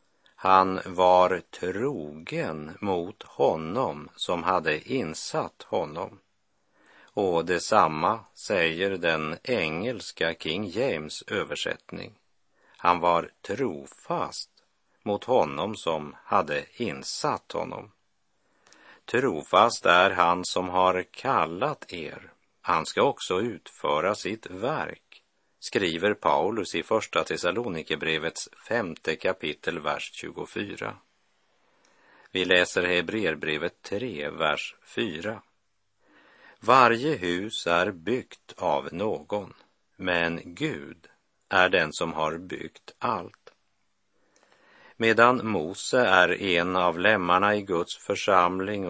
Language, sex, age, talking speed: Swedish, male, 50-69, 95 wpm